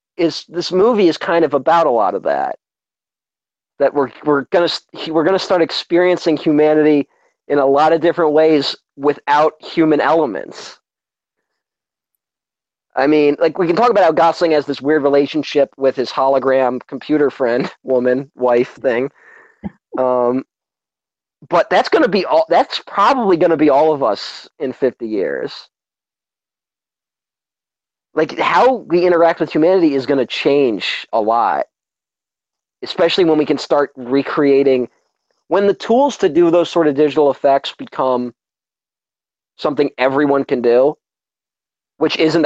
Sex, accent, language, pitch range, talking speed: male, American, English, 130-160 Hz, 150 wpm